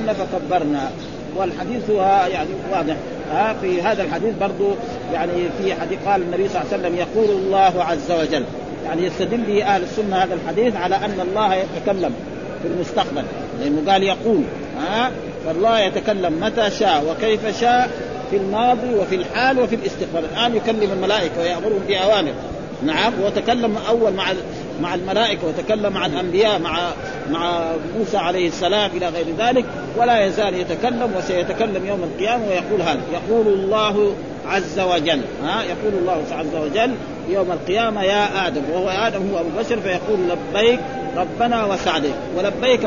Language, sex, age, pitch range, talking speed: Arabic, male, 40-59, 175-215 Hz, 145 wpm